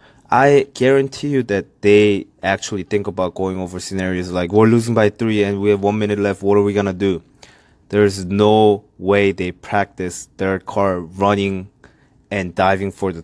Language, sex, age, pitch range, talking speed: English, male, 20-39, 95-110 Hz, 180 wpm